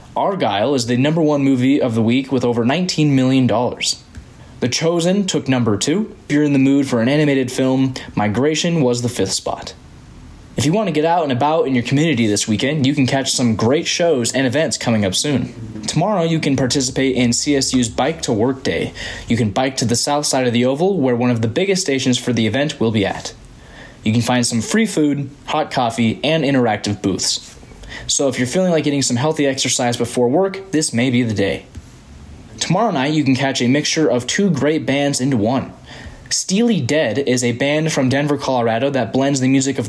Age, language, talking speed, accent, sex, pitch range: 20-39, English, 210 wpm, American, male, 120-150 Hz